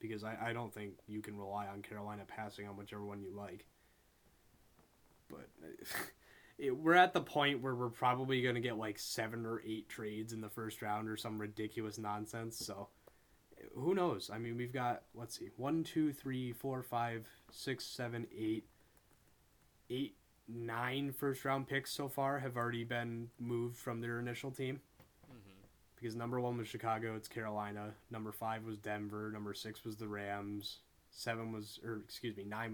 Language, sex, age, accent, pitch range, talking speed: English, male, 10-29, American, 105-125 Hz, 175 wpm